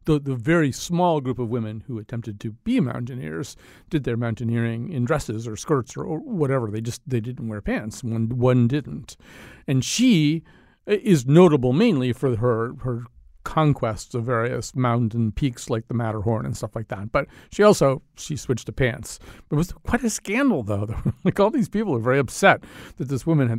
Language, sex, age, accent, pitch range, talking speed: English, male, 50-69, American, 115-160 Hz, 190 wpm